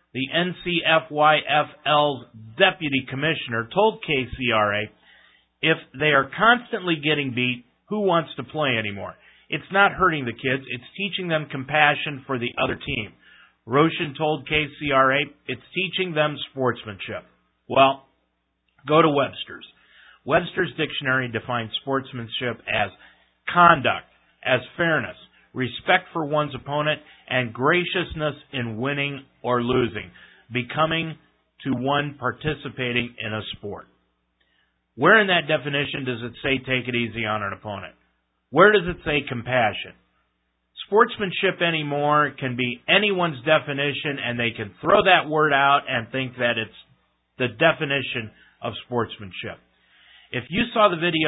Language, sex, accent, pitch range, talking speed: English, male, American, 120-155 Hz, 130 wpm